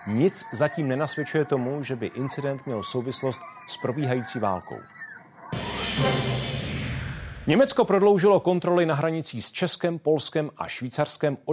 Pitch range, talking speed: 125-165 Hz, 120 wpm